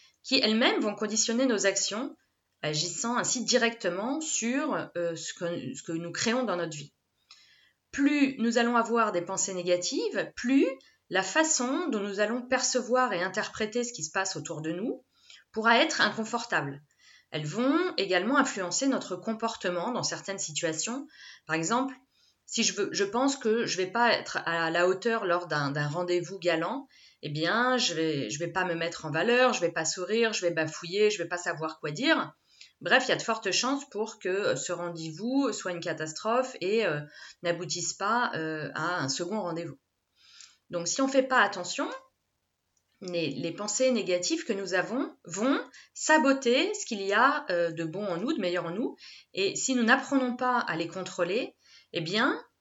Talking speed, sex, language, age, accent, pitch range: 185 wpm, female, French, 20-39, French, 170-250 Hz